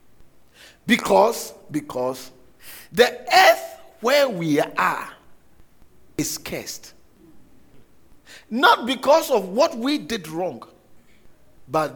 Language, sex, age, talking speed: English, male, 50-69, 85 wpm